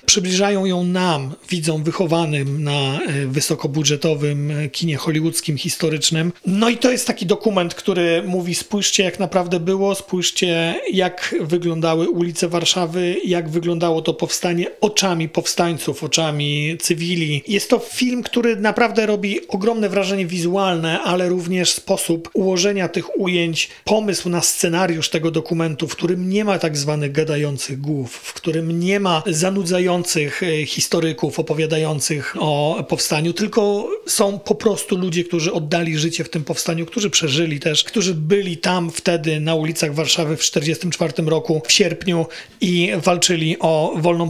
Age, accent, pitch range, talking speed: 40-59, native, 160-195 Hz, 140 wpm